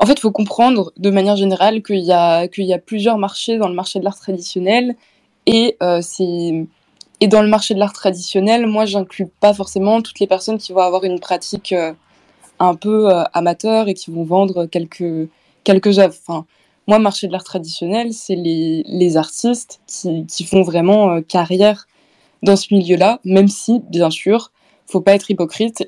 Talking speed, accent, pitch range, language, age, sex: 190 wpm, French, 170-200 Hz, English, 20-39, female